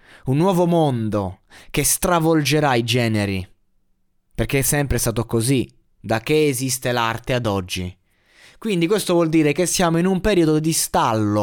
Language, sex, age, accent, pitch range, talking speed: Italian, male, 20-39, native, 115-165 Hz, 150 wpm